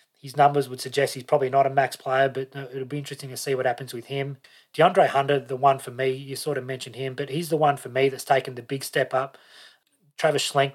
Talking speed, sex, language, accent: 250 wpm, male, English, Australian